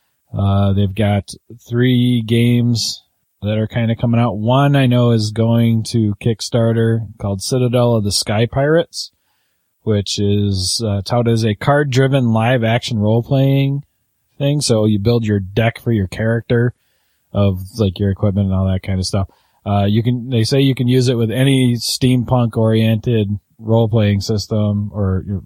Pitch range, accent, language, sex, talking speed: 100-120 Hz, American, English, male, 160 wpm